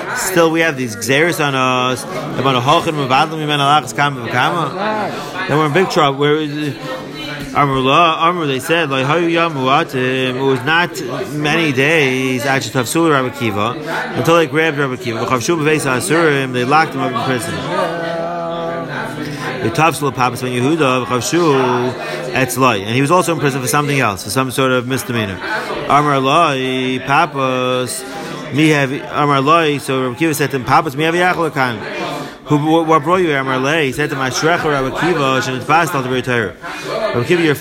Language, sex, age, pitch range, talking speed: French, male, 30-49, 130-160 Hz, 135 wpm